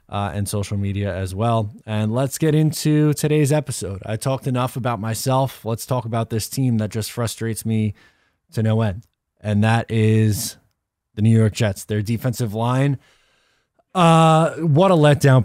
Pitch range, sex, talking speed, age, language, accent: 110-145 Hz, male, 165 wpm, 20-39, English, American